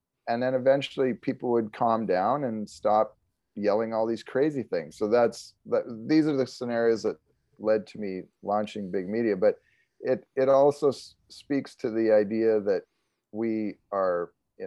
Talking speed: 170 wpm